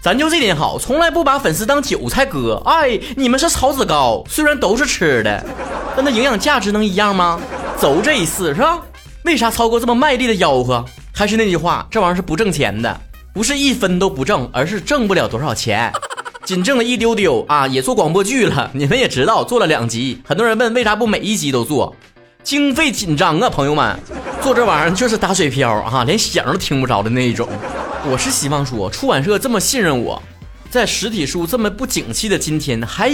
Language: Chinese